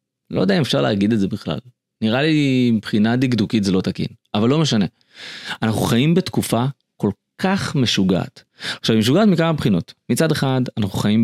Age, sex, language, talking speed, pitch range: 30-49, male, Hebrew, 175 wpm, 105-130 Hz